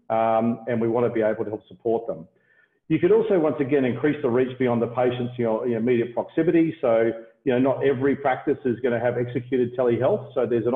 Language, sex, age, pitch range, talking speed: English, male, 50-69, 115-140 Hz, 215 wpm